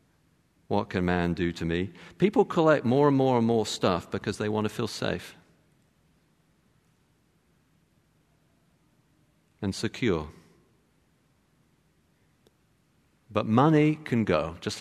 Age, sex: 50-69, male